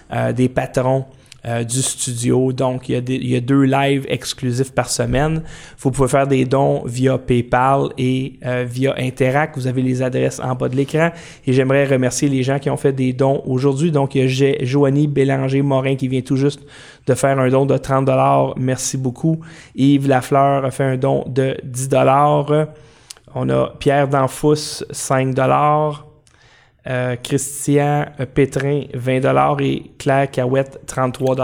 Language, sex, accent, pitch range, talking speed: French, male, Canadian, 130-145 Hz, 170 wpm